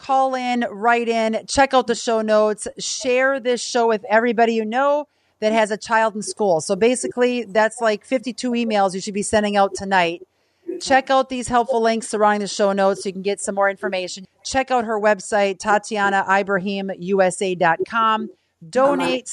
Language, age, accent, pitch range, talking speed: English, 40-59, American, 200-245 Hz, 175 wpm